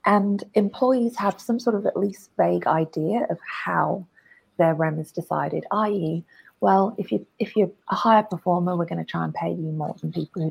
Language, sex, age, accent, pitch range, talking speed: English, female, 30-49, British, 170-220 Hz, 205 wpm